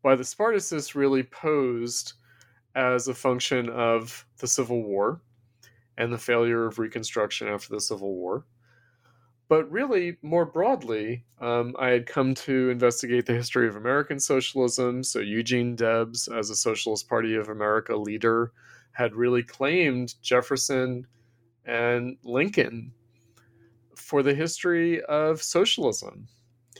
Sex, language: male, English